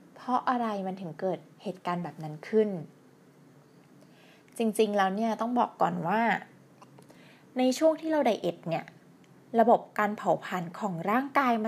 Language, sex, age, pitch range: Thai, female, 20-39, 180-240 Hz